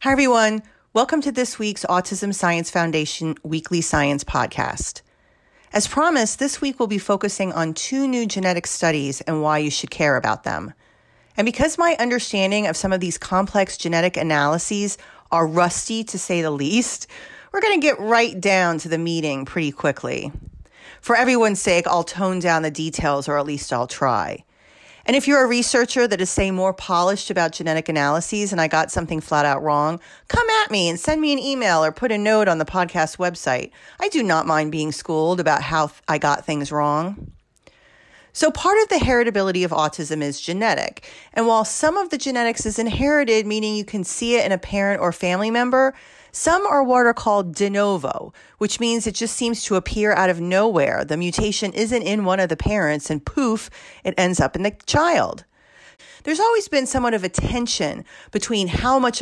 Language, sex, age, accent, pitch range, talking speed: English, female, 40-59, American, 160-230 Hz, 195 wpm